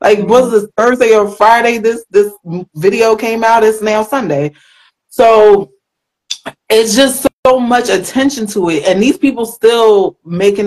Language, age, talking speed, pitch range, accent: English, 20-39, 150 wpm, 175-225 Hz, American